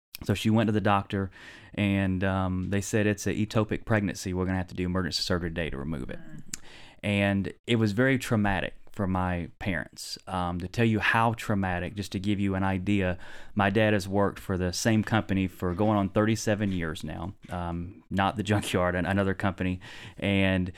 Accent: American